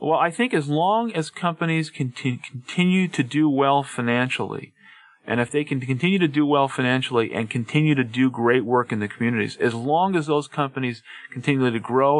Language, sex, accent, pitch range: English, male, American, 115-145 Hz